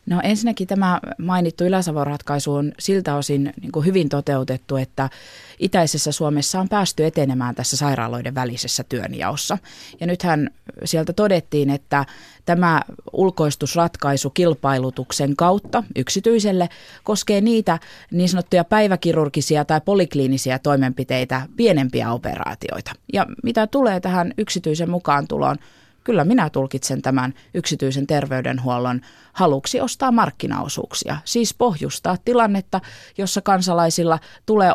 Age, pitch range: 20-39, 140-185 Hz